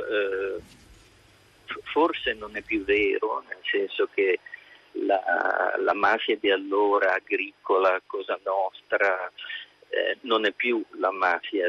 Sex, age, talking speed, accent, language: male, 50-69, 115 wpm, native, Italian